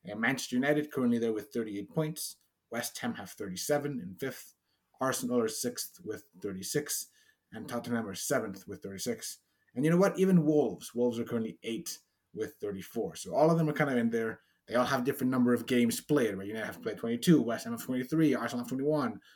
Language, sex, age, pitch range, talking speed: English, male, 30-49, 110-150 Hz, 200 wpm